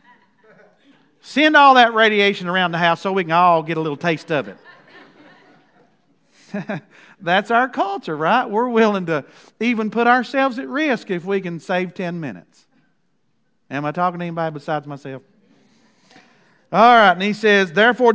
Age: 50-69